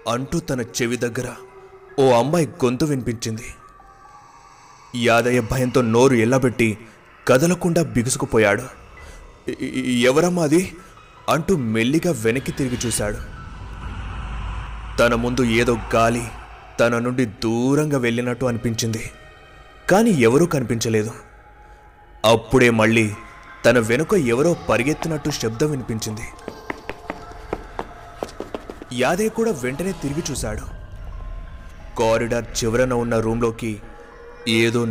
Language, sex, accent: Telugu, male, native